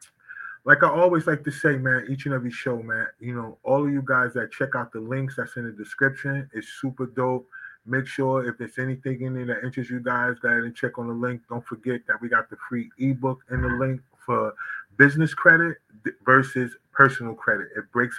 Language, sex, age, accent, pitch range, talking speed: English, male, 20-39, American, 120-135 Hz, 220 wpm